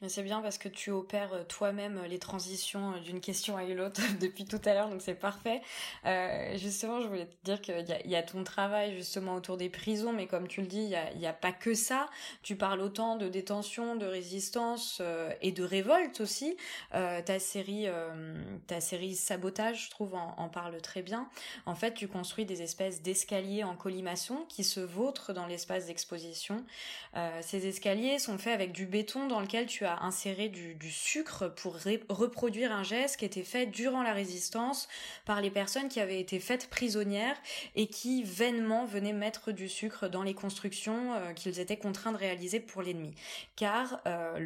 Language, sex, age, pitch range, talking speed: French, female, 20-39, 185-225 Hz, 195 wpm